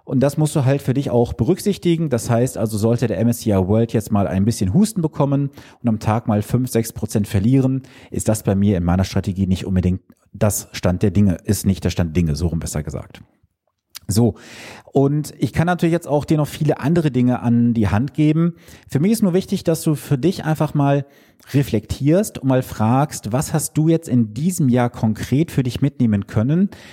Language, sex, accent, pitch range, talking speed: German, male, German, 110-155 Hz, 210 wpm